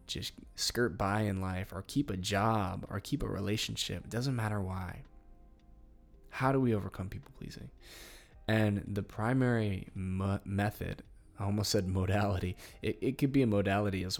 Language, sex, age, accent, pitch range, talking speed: English, male, 20-39, American, 95-110 Hz, 160 wpm